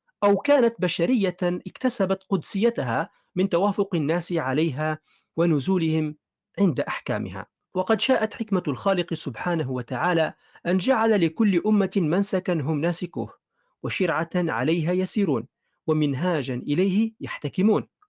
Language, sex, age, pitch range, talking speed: Arabic, male, 40-59, 150-200 Hz, 105 wpm